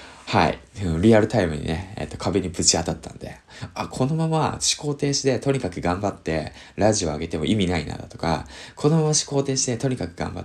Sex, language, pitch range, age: male, Japanese, 85-120 Hz, 20-39